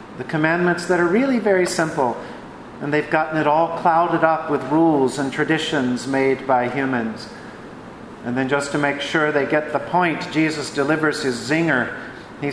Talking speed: 170 wpm